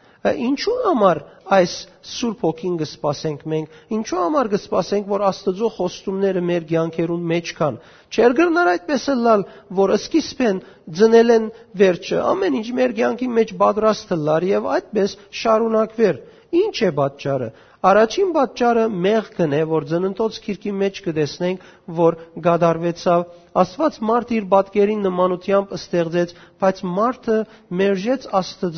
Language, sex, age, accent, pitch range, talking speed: English, male, 50-69, Turkish, 175-220 Hz, 80 wpm